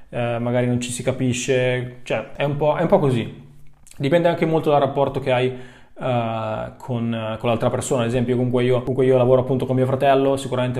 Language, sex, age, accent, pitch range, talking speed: Italian, male, 20-39, native, 120-130 Hz, 215 wpm